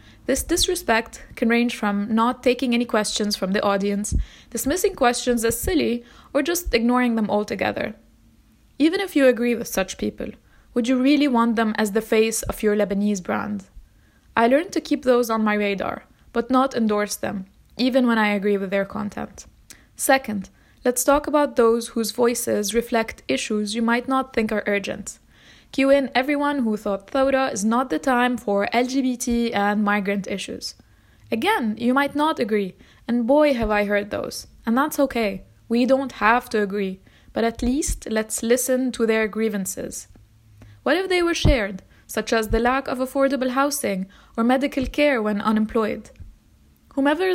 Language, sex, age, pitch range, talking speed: English, female, 20-39, 210-265 Hz, 170 wpm